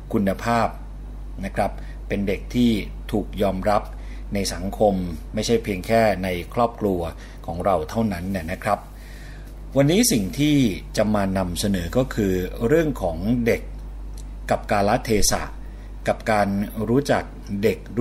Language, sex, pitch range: Thai, male, 95-120 Hz